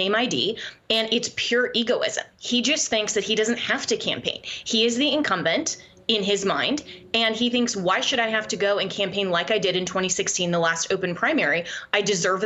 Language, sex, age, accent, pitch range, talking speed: English, female, 20-39, American, 185-220 Hz, 205 wpm